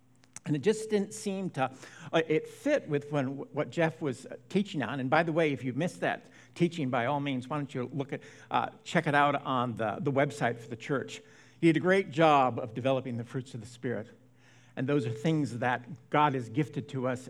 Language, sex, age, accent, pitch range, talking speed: English, male, 60-79, American, 125-155 Hz, 225 wpm